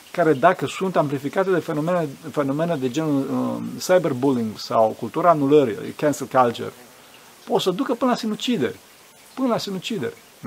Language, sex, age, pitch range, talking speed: Romanian, male, 50-69, 135-185 Hz, 145 wpm